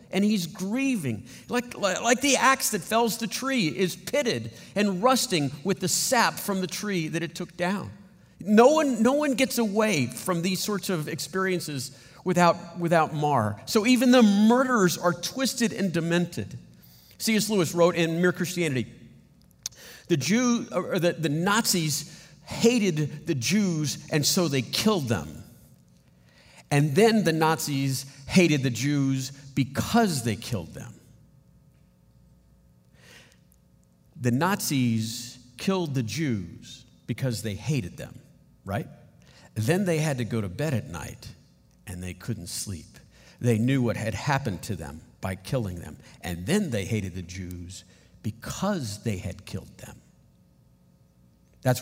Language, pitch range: English, 115-190 Hz